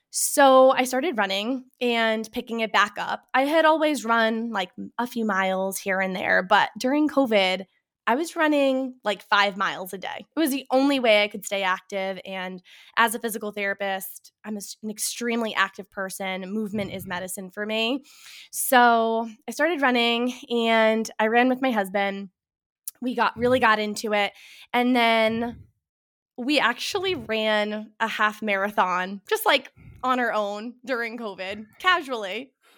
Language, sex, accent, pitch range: English, female, American, 200-245 Hz